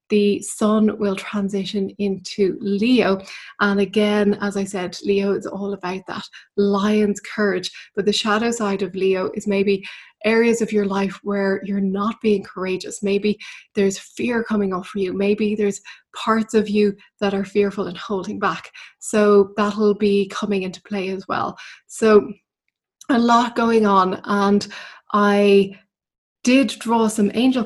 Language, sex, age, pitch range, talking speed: English, female, 20-39, 195-215 Hz, 155 wpm